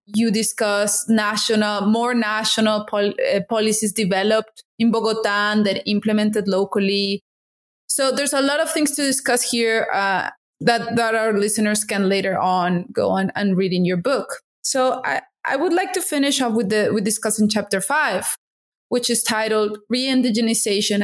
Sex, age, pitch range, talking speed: female, 20-39, 210-255 Hz, 155 wpm